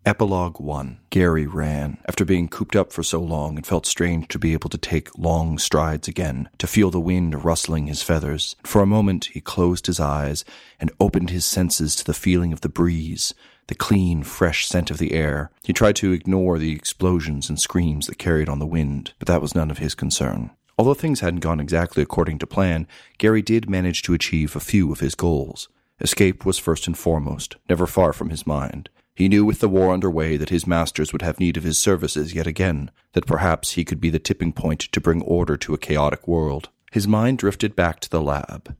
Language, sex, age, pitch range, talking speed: English, male, 40-59, 80-95 Hz, 215 wpm